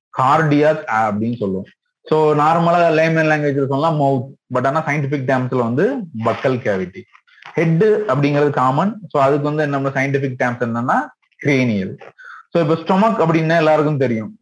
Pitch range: 125-165 Hz